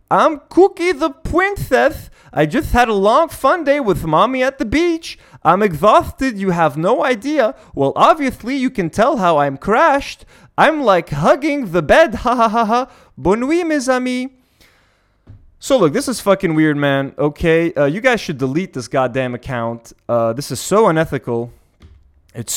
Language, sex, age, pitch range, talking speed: English, male, 20-39, 125-215 Hz, 170 wpm